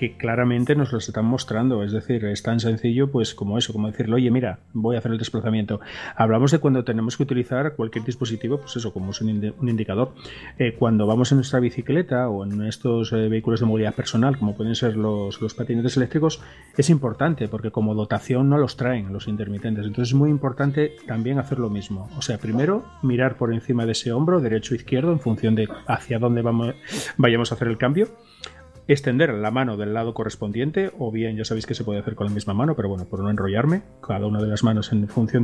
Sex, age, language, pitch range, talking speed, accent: male, 30-49, Spanish, 110-135 Hz, 220 wpm, Spanish